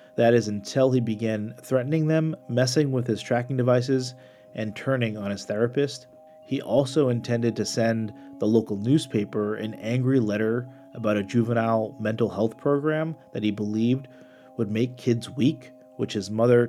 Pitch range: 105-130 Hz